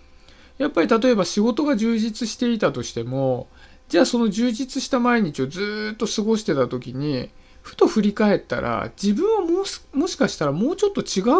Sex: male